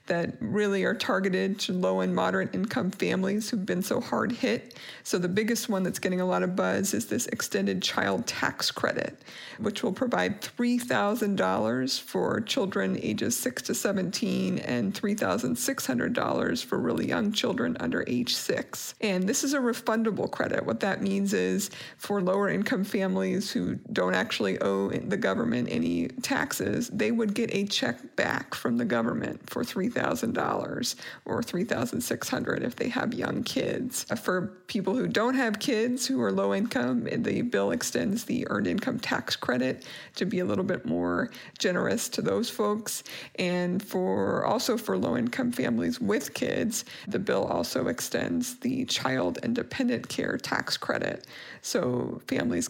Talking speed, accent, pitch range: 165 wpm, American, 185-235 Hz